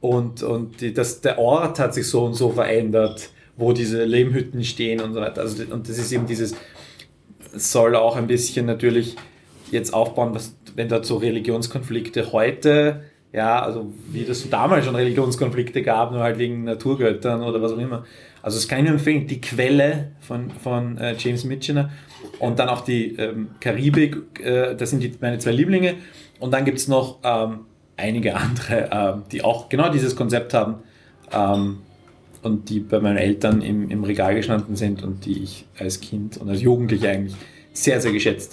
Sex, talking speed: male, 185 wpm